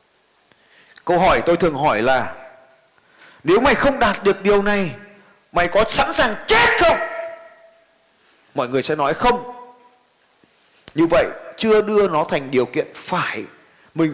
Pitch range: 180-280 Hz